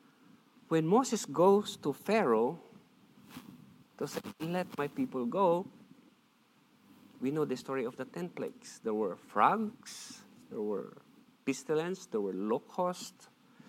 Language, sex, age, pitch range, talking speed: English, male, 50-69, 150-245 Hz, 125 wpm